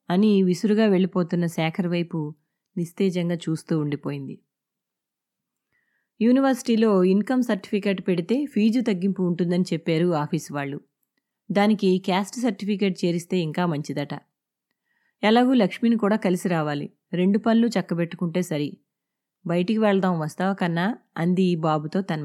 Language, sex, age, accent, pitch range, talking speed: English, female, 20-39, Indian, 170-215 Hz, 105 wpm